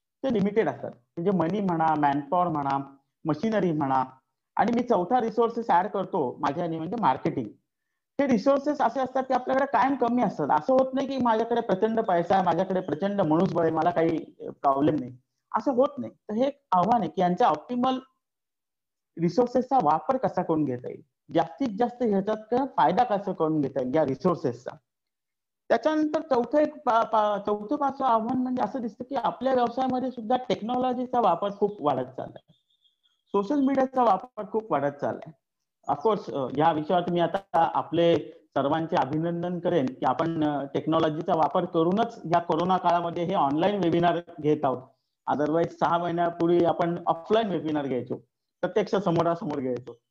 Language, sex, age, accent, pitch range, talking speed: English, male, 50-69, Indian, 160-235 Hz, 95 wpm